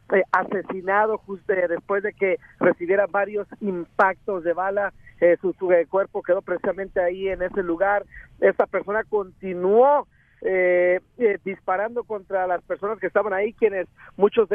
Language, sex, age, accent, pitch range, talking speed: Spanish, male, 50-69, Mexican, 185-225 Hz, 145 wpm